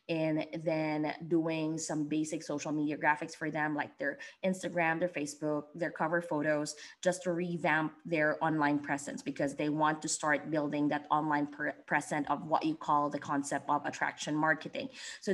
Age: 20-39